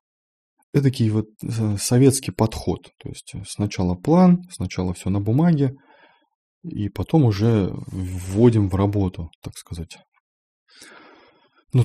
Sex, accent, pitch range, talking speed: male, native, 95-130 Hz, 105 wpm